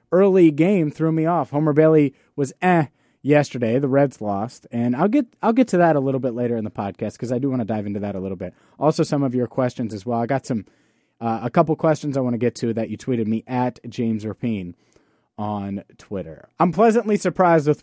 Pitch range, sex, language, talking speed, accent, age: 120-165 Hz, male, English, 235 wpm, American, 30-49